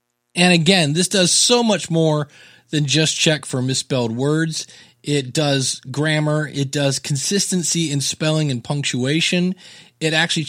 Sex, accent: male, American